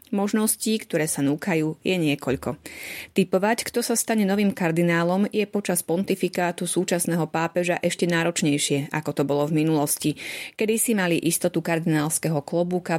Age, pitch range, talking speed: 30-49, 155-185 Hz, 140 wpm